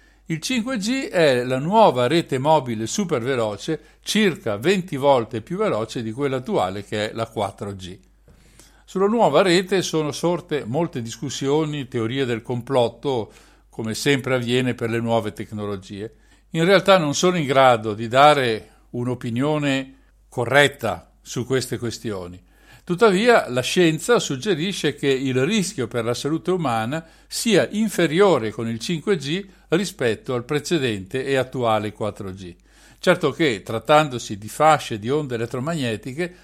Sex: male